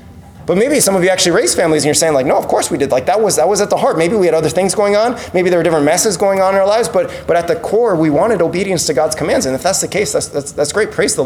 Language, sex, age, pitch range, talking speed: English, male, 20-39, 145-195 Hz, 340 wpm